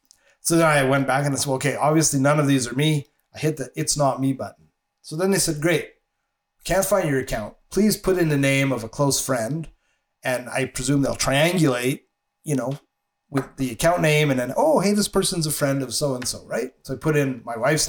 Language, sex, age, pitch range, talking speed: English, male, 30-49, 125-150 Hz, 230 wpm